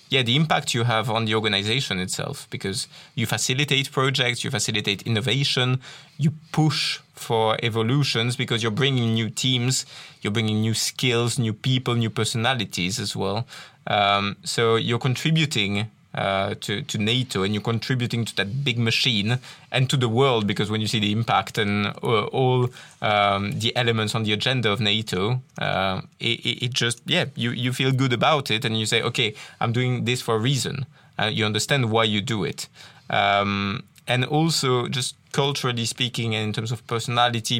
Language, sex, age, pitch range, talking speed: English, male, 20-39, 110-135 Hz, 175 wpm